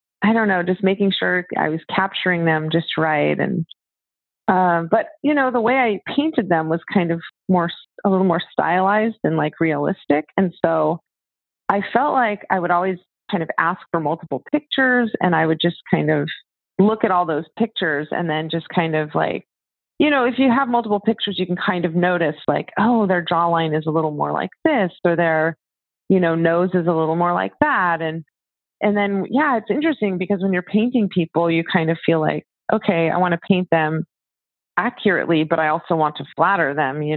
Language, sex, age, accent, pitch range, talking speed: English, female, 30-49, American, 155-200 Hz, 205 wpm